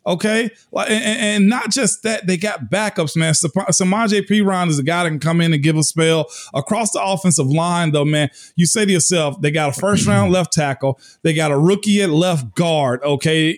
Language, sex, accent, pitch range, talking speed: English, male, American, 160-200 Hz, 210 wpm